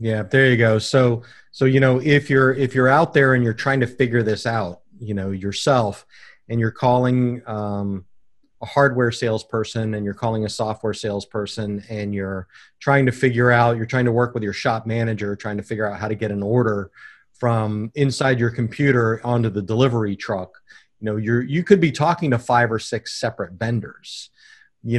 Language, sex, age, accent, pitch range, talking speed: English, male, 30-49, American, 110-130 Hz, 195 wpm